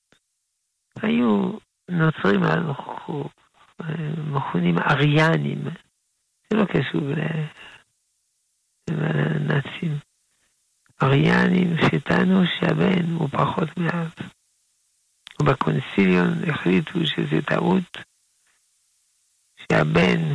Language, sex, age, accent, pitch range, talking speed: Hebrew, male, 60-79, Italian, 130-175 Hz, 55 wpm